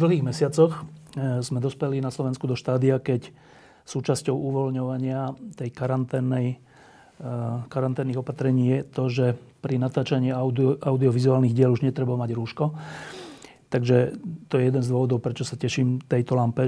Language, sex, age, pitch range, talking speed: Slovak, male, 40-59, 125-145 Hz, 135 wpm